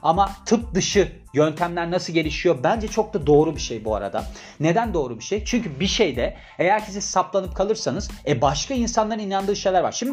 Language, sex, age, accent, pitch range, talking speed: Turkish, male, 40-59, native, 165-210 Hz, 190 wpm